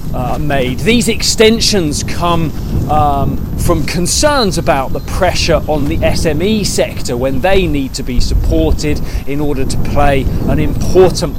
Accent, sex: British, male